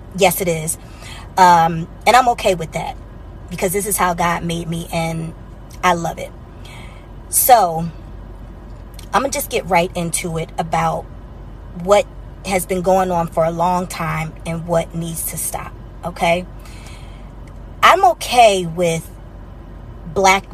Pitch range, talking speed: 165-200 Hz, 145 wpm